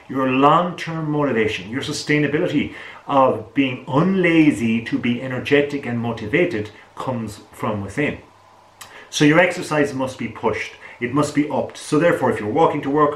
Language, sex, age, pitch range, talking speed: English, male, 40-59, 115-145 Hz, 155 wpm